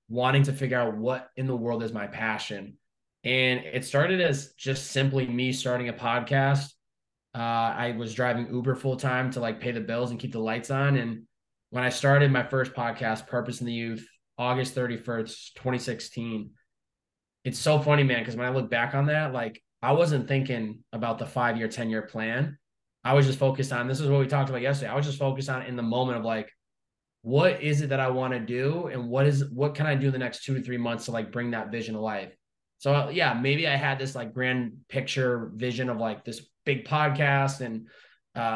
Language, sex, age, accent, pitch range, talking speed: English, male, 20-39, American, 115-135 Hz, 220 wpm